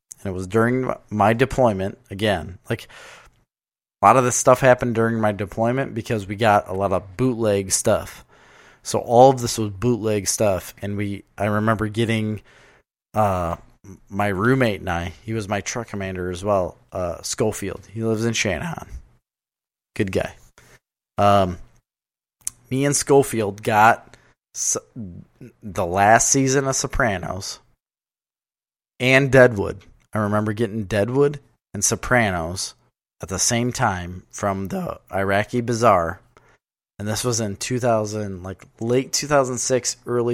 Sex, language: male, English